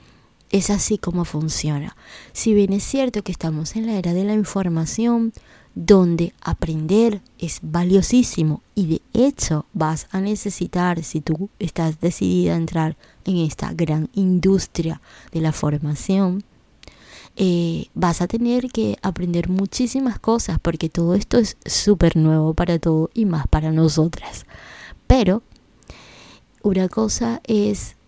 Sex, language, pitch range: female, Spanish, 165-205 Hz